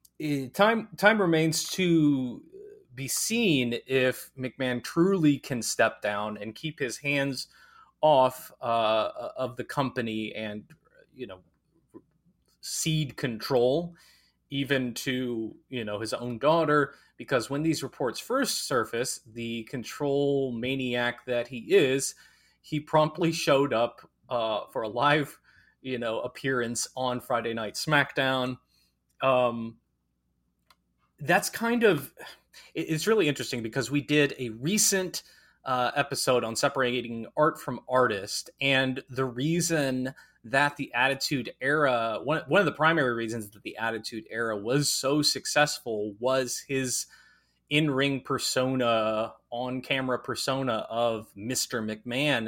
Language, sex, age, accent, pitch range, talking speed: English, male, 30-49, American, 120-145 Hz, 125 wpm